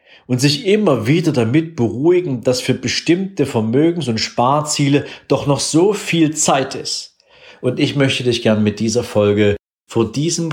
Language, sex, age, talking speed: German, male, 50-69, 160 wpm